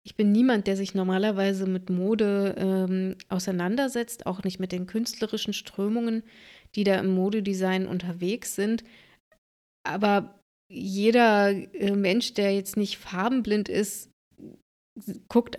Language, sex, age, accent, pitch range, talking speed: German, female, 20-39, German, 185-215 Hz, 125 wpm